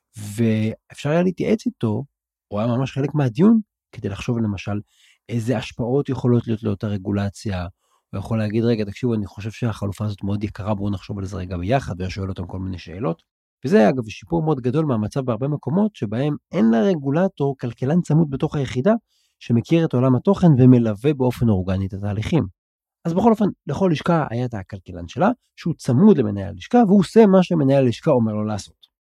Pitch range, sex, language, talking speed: 105-165 Hz, male, Hebrew, 150 wpm